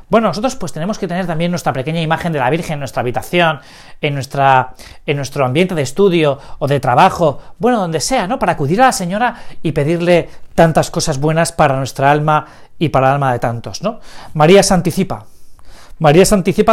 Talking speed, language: 195 wpm, Spanish